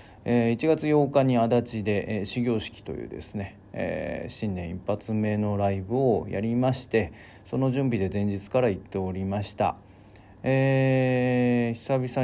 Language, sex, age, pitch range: Japanese, male, 40-59, 100-120 Hz